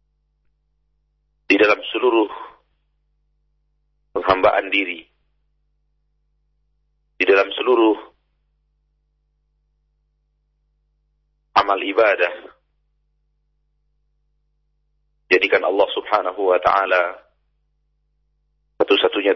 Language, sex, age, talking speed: Indonesian, male, 50-69, 50 wpm